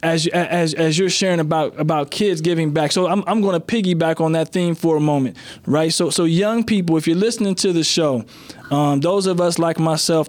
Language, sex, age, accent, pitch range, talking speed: English, male, 20-39, American, 150-185 Hz, 235 wpm